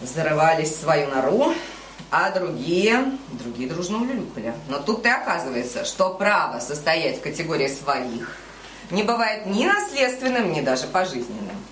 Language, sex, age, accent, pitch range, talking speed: Russian, female, 20-39, native, 140-210 Hz, 130 wpm